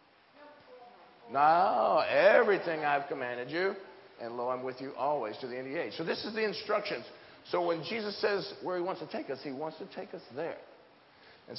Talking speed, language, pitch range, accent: 200 wpm, English, 150-190 Hz, American